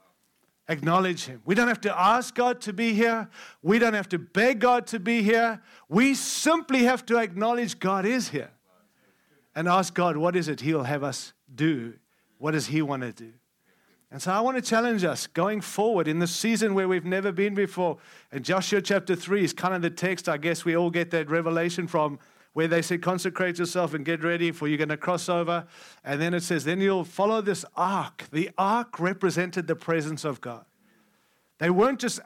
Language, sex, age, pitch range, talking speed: English, male, 50-69, 170-225 Hz, 205 wpm